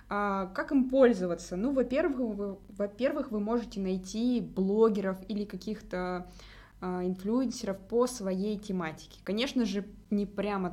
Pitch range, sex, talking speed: 175-210 Hz, female, 110 wpm